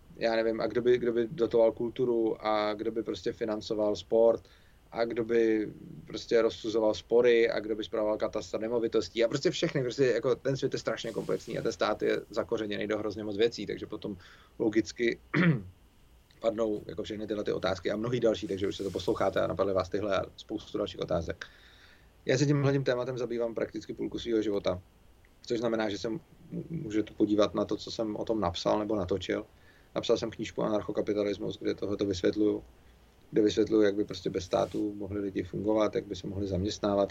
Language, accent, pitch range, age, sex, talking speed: Czech, native, 100-115 Hz, 30-49, male, 185 wpm